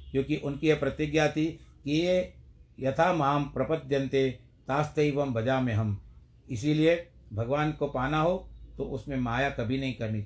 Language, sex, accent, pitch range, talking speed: Hindi, male, native, 110-140 Hz, 145 wpm